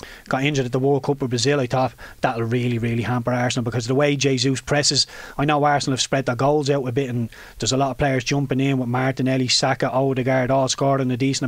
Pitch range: 130-145 Hz